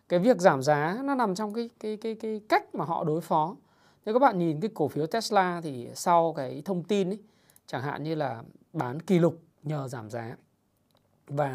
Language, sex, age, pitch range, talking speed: Vietnamese, male, 20-39, 145-195 Hz, 215 wpm